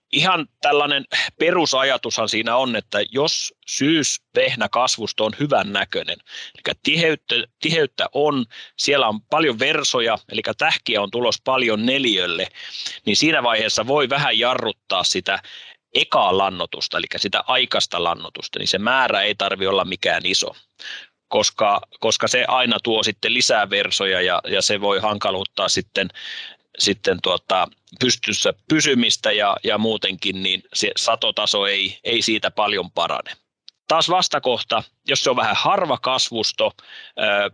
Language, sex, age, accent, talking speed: Finnish, male, 30-49, native, 135 wpm